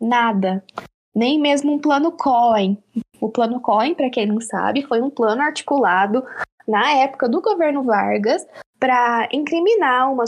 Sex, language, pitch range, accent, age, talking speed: female, Portuguese, 230-295 Hz, Brazilian, 10-29, 145 wpm